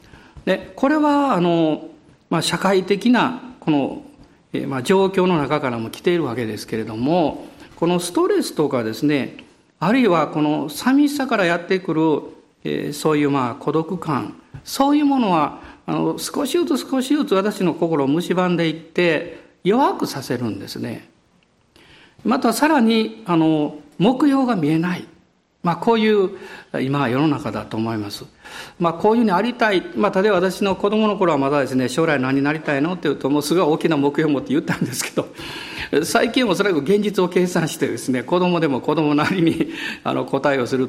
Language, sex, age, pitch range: Japanese, male, 50-69, 150-240 Hz